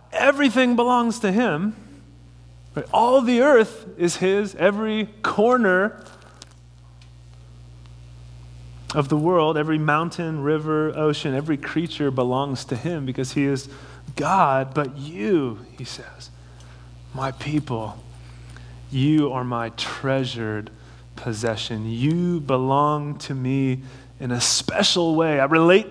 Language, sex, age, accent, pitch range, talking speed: English, male, 30-49, American, 120-165 Hz, 110 wpm